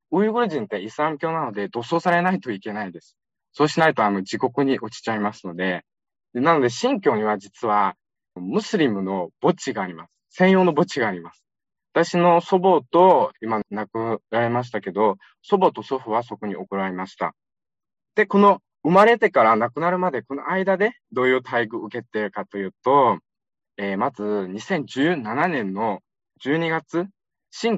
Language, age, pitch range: Japanese, 20-39, 105-170 Hz